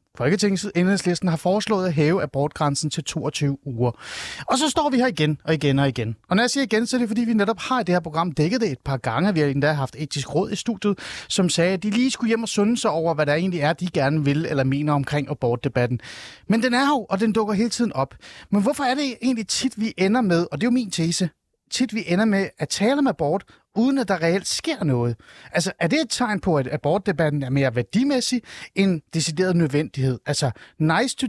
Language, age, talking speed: Danish, 30-49, 245 wpm